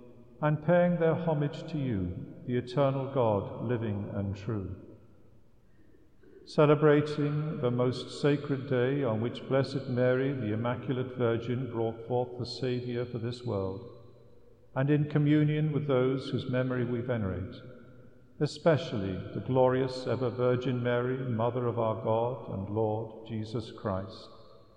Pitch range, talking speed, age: 115-140 Hz, 130 wpm, 50-69